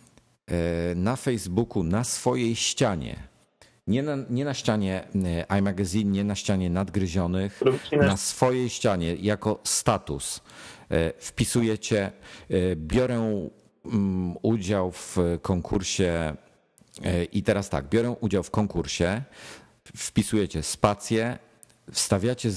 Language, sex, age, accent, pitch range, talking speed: Polish, male, 50-69, native, 85-110 Hz, 95 wpm